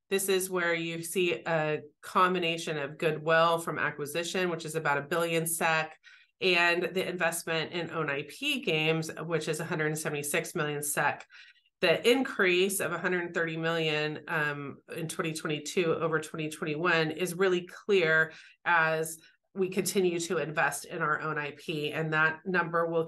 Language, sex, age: Swedish, female, 30-49